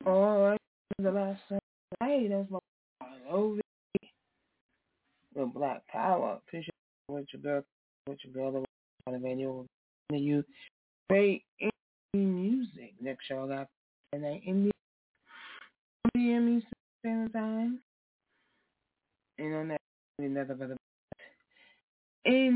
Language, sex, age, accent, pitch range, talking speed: English, female, 20-39, American, 150-215 Hz, 95 wpm